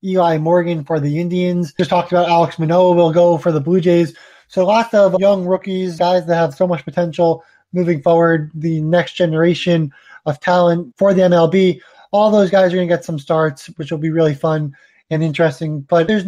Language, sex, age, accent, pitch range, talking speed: English, male, 20-39, American, 160-185 Hz, 205 wpm